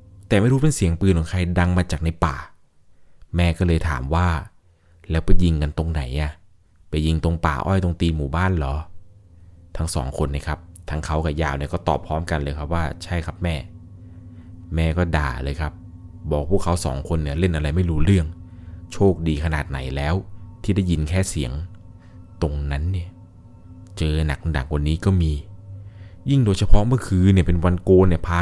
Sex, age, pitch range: male, 20-39, 80-100 Hz